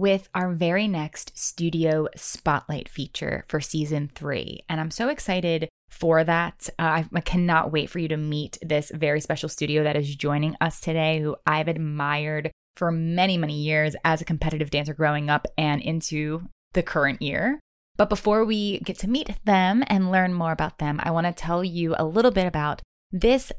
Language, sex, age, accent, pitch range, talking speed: English, female, 20-39, American, 155-210 Hz, 185 wpm